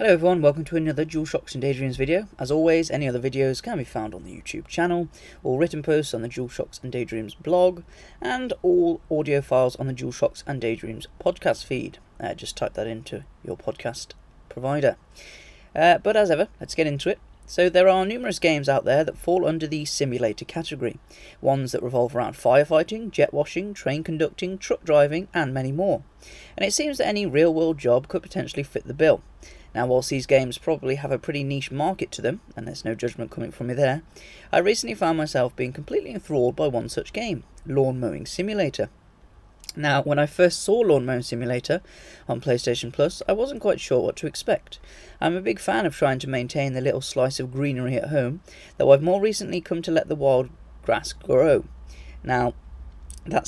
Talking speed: 200 wpm